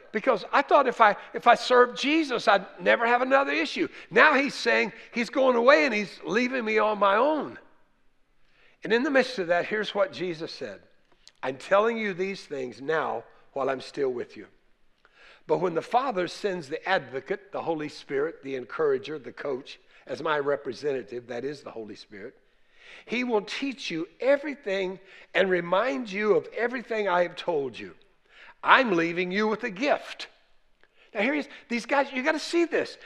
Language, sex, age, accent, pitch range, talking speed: English, male, 60-79, American, 195-285 Hz, 185 wpm